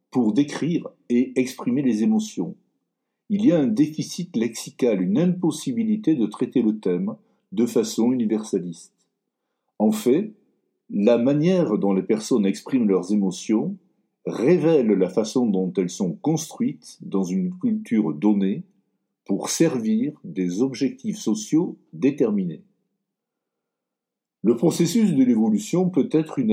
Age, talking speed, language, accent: 60-79, 125 wpm, French, French